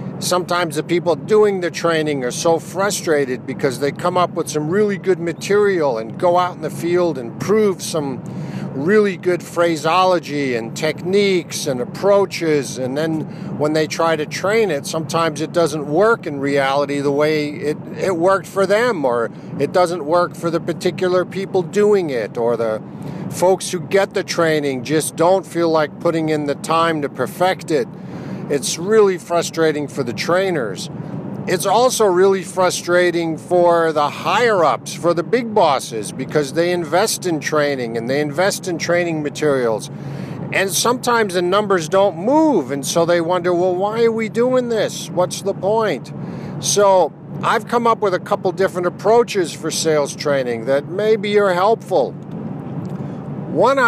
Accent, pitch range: American, 155-195 Hz